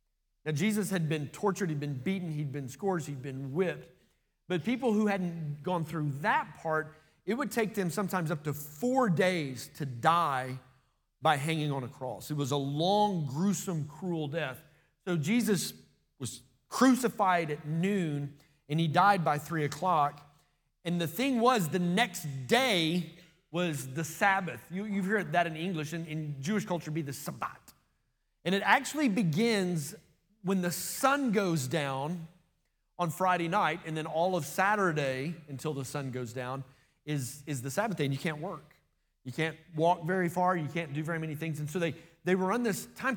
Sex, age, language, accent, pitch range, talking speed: male, 30-49, English, American, 150-195 Hz, 180 wpm